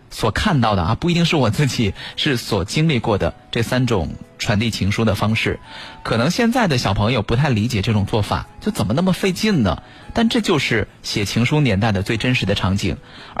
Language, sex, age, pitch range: Chinese, male, 20-39, 105-140 Hz